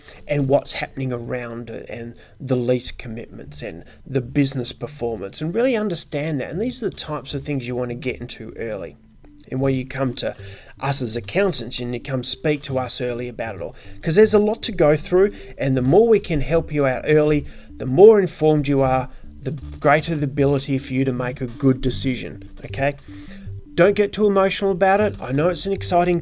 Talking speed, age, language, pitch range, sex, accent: 210 wpm, 30-49, English, 120-150 Hz, male, Australian